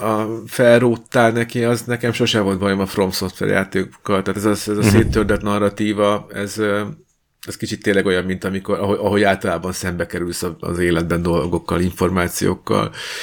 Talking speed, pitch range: 150 wpm, 90-105 Hz